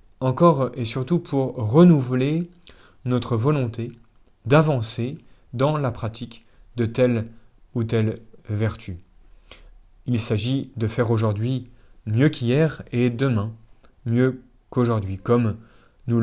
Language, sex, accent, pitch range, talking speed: French, male, French, 110-140 Hz, 105 wpm